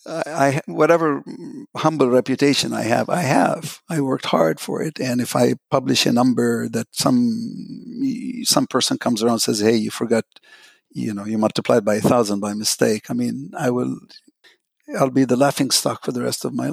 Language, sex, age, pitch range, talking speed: English, male, 60-79, 110-135 Hz, 190 wpm